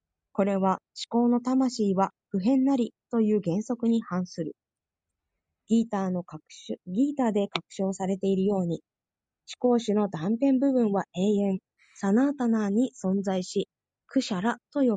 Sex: female